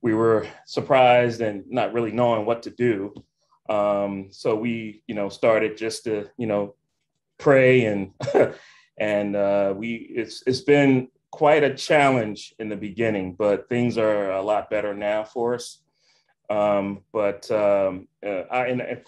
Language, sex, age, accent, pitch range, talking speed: English, male, 30-49, American, 105-130 Hz, 155 wpm